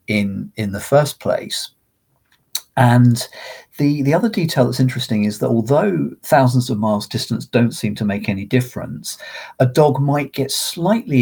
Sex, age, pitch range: male, 50-69, 105-130 Hz